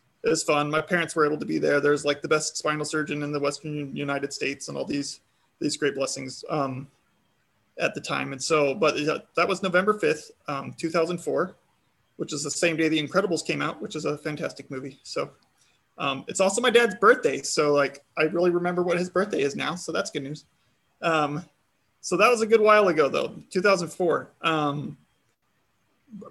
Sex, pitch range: male, 150-180 Hz